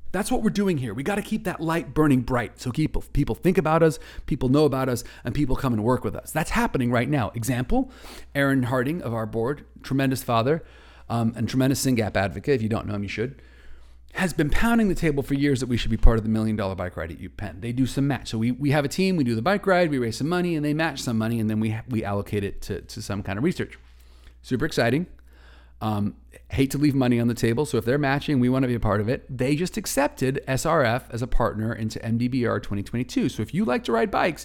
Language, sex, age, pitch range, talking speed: English, male, 40-59, 110-150 Hz, 260 wpm